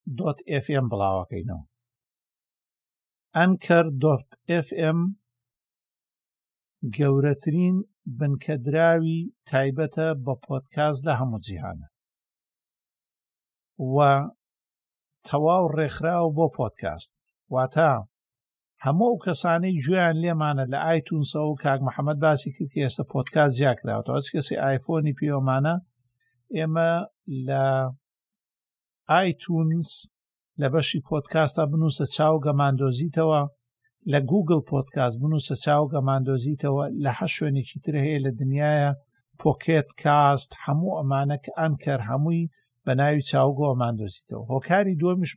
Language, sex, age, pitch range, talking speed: Arabic, male, 60-79, 135-160 Hz, 110 wpm